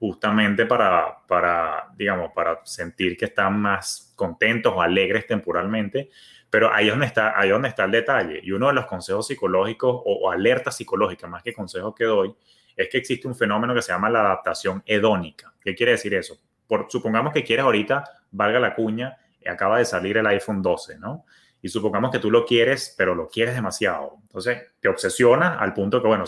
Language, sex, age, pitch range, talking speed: English, male, 30-49, 110-165 Hz, 200 wpm